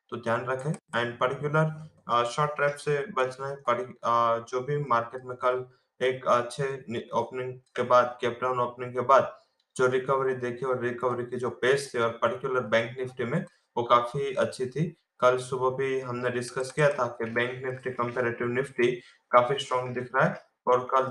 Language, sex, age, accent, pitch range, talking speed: English, male, 20-39, Indian, 125-140 Hz, 150 wpm